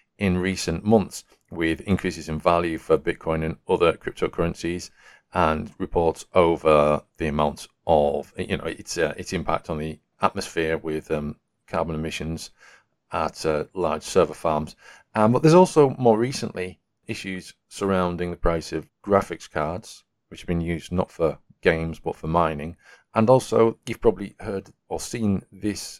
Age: 40-59